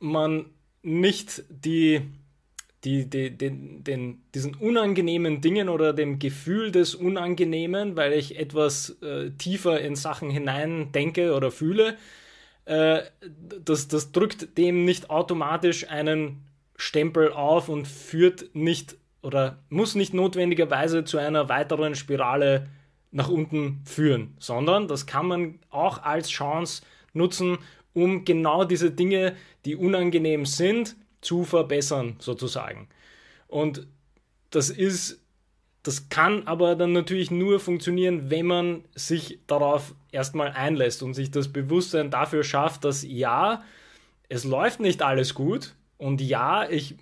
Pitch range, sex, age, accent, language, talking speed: 140-175 Hz, male, 20-39, Austrian, German, 120 wpm